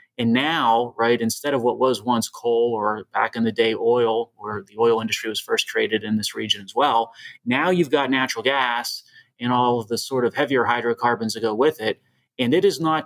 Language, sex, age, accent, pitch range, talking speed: English, male, 30-49, American, 115-140 Hz, 220 wpm